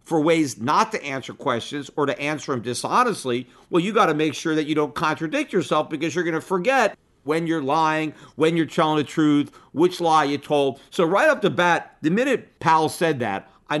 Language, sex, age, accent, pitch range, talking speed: English, male, 50-69, American, 140-190 Hz, 215 wpm